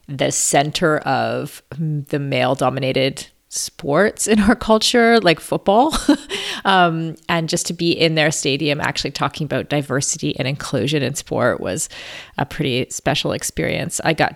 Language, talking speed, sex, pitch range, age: English, 140 wpm, female, 145-185 Hz, 30-49